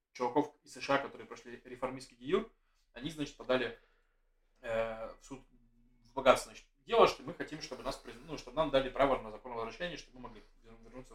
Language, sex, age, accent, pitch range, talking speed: Russian, male, 20-39, native, 120-150 Hz, 190 wpm